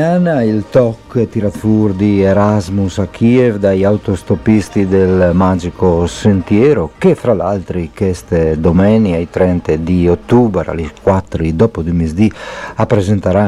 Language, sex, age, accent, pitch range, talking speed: Italian, male, 50-69, native, 85-105 Hz, 115 wpm